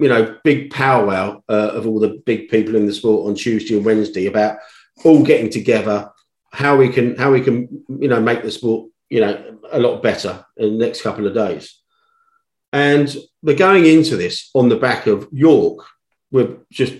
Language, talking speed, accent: English, 195 wpm, British